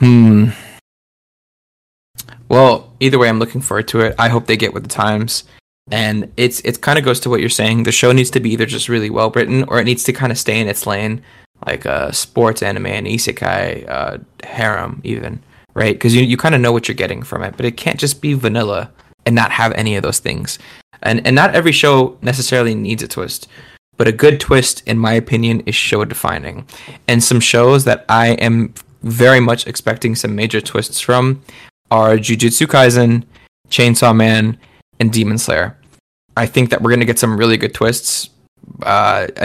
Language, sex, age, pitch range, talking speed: English, male, 20-39, 110-125 Hz, 200 wpm